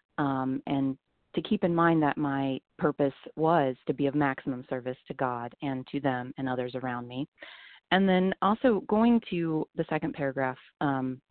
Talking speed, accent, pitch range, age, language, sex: 175 wpm, American, 135-165 Hz, 30-49, English, female